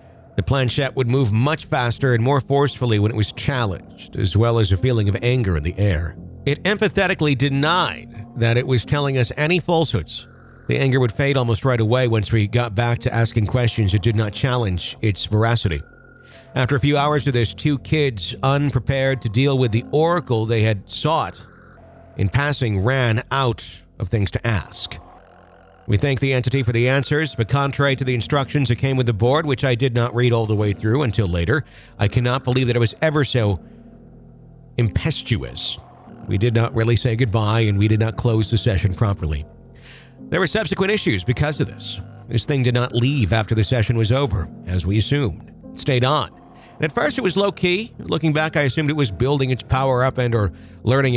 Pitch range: 110-135 Hz